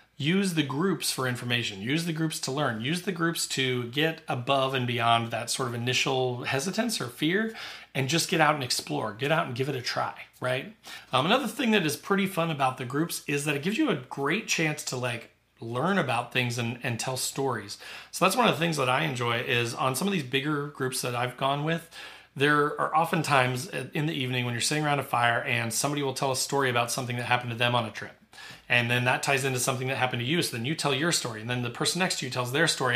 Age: 30-49